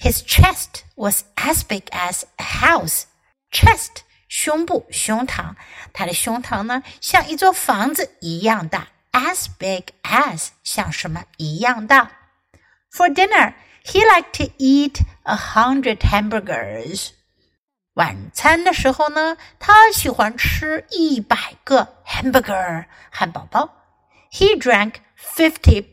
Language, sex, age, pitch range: Chinese, female, 60-79, 220-320 Hz